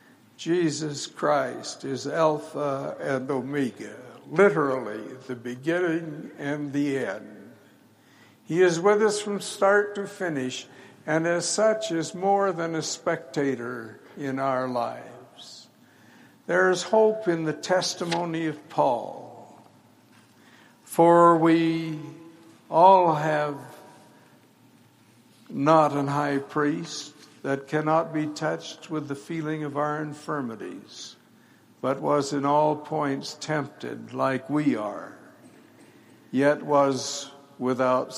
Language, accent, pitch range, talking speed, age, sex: English, American, 145-170 Hz, 110 wpm, 60-79, male